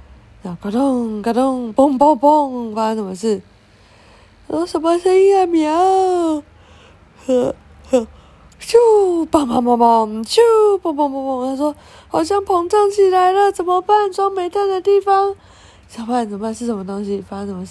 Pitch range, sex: 200-325 Hz, female